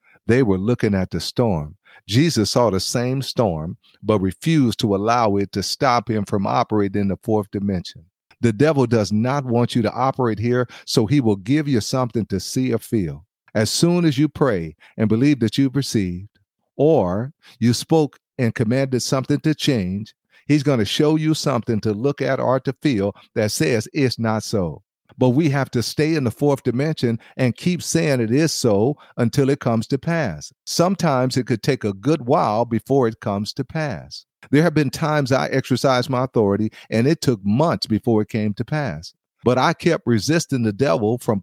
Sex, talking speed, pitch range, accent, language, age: male, 195 wpm, 110-140 Hz, American, English, 50-69